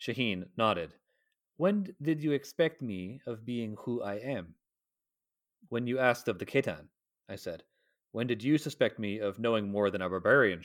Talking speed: 175 wpm